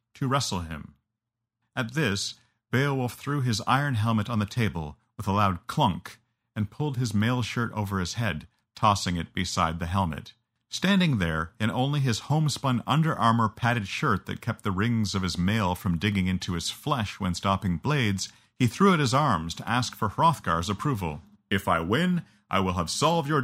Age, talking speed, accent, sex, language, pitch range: 50-69, 185 wpm, American, male, English, 95-125 Hz